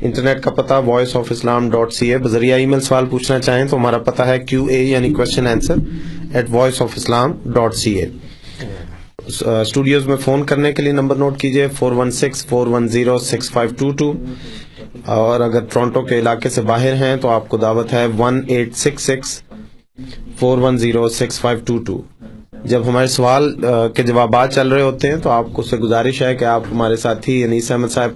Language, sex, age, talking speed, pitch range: Urdu, male, 30-49, 130 wpm, 115-130 Hz